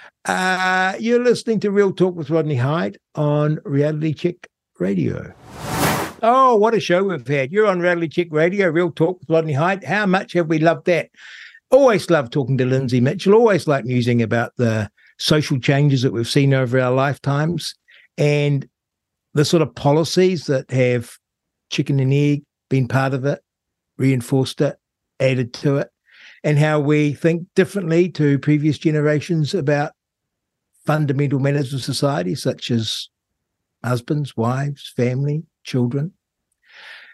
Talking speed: 150 wpm